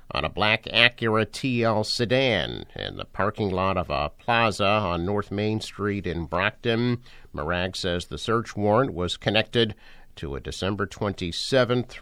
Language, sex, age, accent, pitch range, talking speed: English, male, 50-69, American, 90-115 Hz, 150 wpm